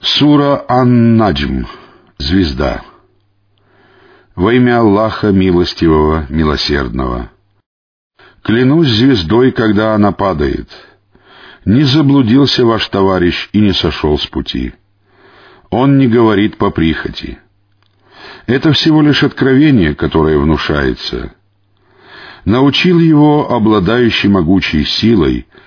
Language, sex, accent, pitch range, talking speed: Russian, male, native, 90-125 Hz, 90 wpm